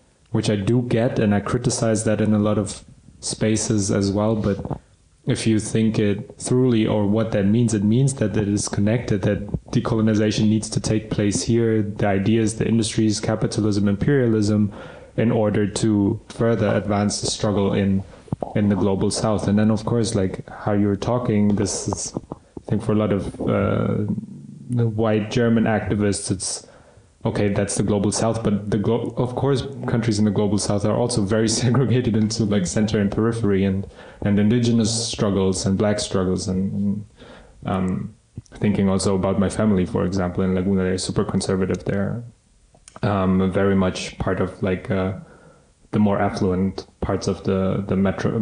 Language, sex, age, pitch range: German, male, 20-39, 100-110 Hz